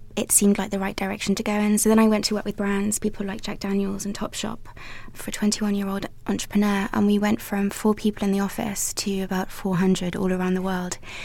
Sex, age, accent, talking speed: female, 20-39, British, 230 wpm